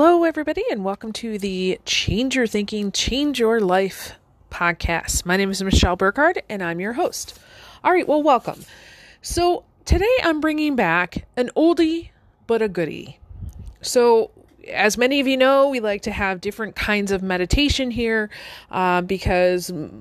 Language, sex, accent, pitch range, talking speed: English, female, American, 185-245 Hz, 160 wpm